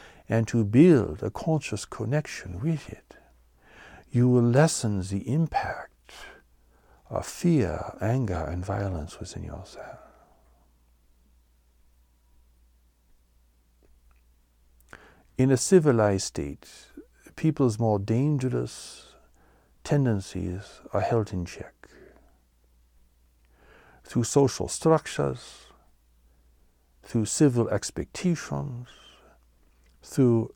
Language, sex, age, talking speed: English, male, 60-79, 75 wpm